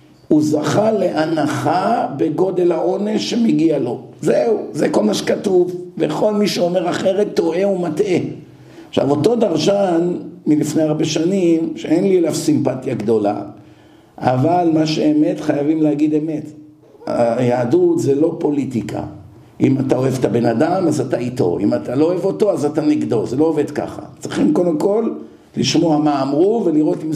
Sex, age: male, 50-69